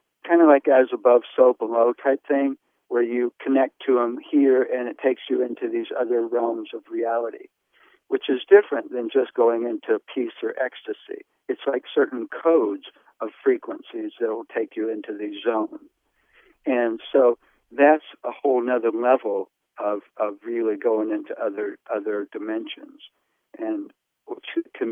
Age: 60-79